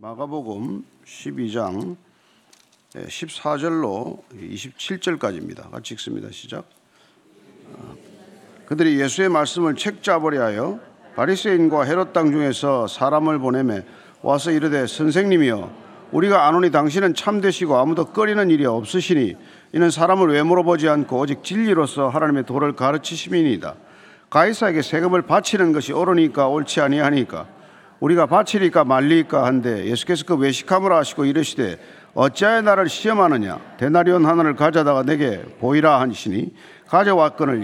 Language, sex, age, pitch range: Korean, male, 50-69, 145-190 Hz